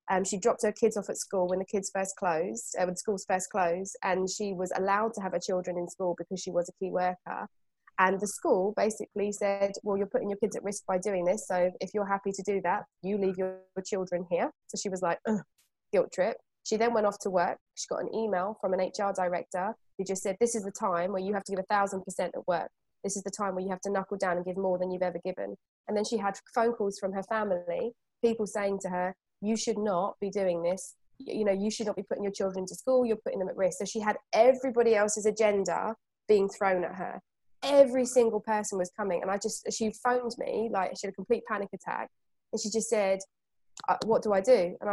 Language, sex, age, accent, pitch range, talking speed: English, female, 20-39, British, 185-215 Hz, 250 wpm